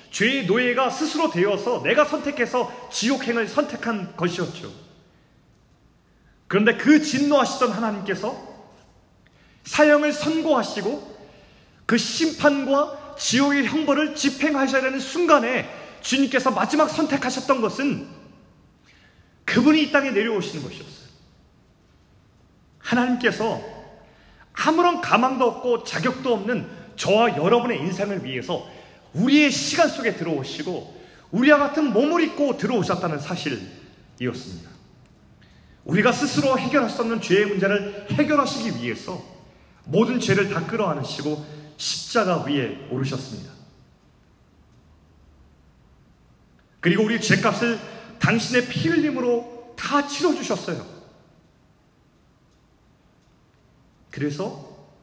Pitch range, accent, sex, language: 175-275 Hz, native, male, Korean